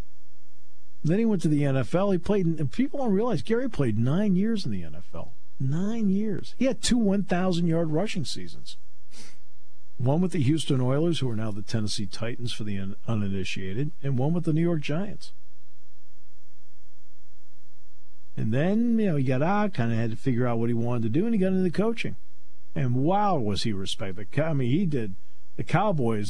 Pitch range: 105-155 Hz